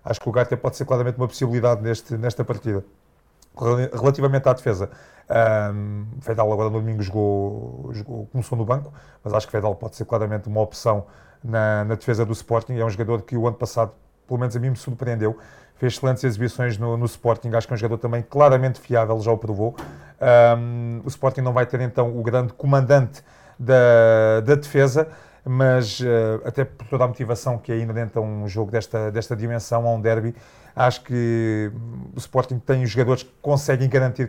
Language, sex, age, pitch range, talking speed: Portuguese, male, 30-49, 115-130 Hz, 195 wpm